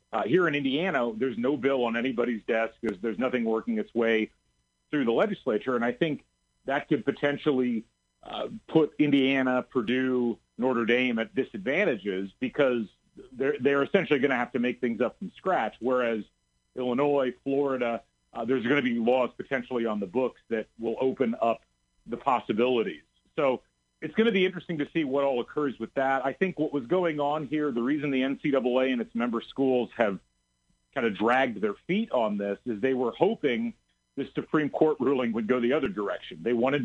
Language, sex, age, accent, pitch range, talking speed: English, male, 40-59, American, 115-140 Hz, 190 wpm